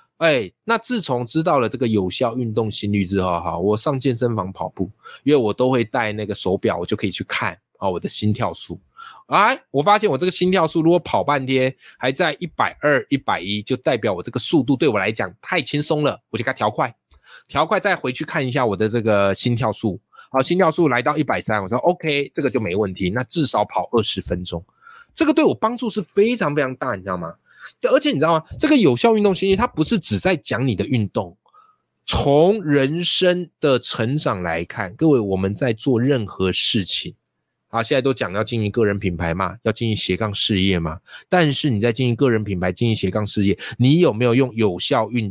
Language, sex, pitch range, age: Chinese, male, 105-165 Hz, 20-39